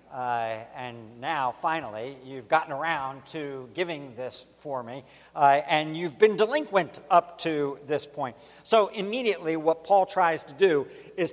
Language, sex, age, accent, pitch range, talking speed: English, male, 60-79, American, 135-180 Hz, 155 wpm